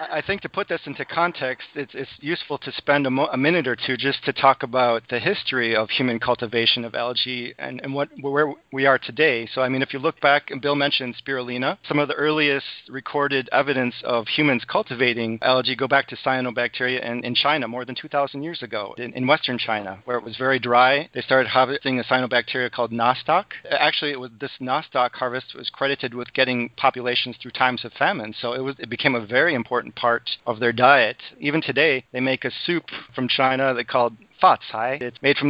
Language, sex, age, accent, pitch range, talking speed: English, male, 40-59, American, 125-145 Hz, 215 wpm